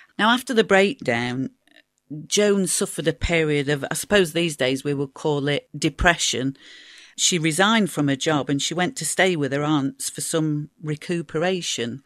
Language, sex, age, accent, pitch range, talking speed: English, female, 40-59, British, 140-175 Hz, 170 wpm